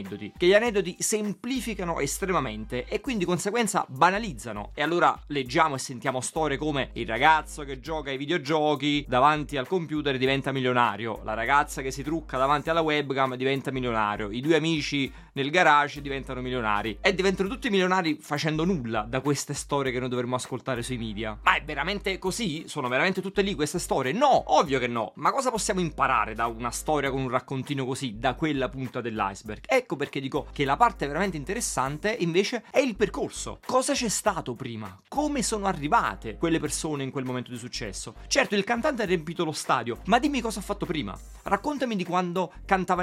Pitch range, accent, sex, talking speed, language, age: 130-195 Hz, native, male, 185 wpm, Italian, 20-39